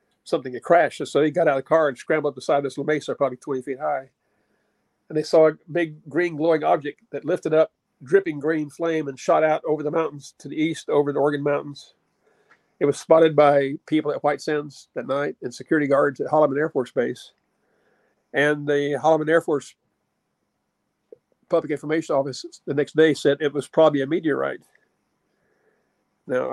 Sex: male